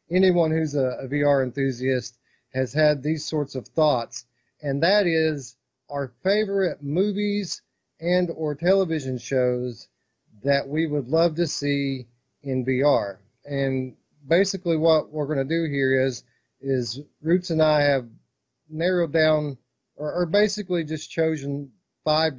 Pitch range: 130-160 Hz